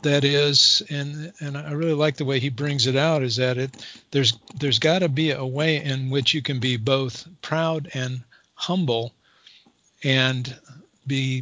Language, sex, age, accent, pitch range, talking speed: English, male, 50-69, American, 125-145 Hz, 180 wpm